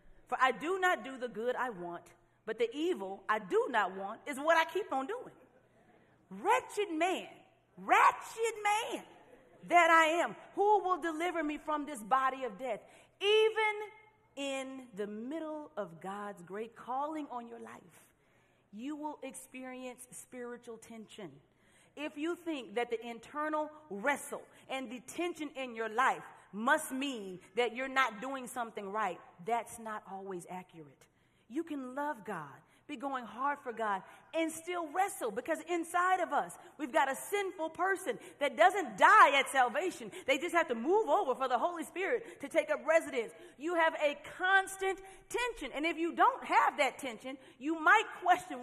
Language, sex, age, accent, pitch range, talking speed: English, female, 40-59, American, 240-345 Hz, 165 wpm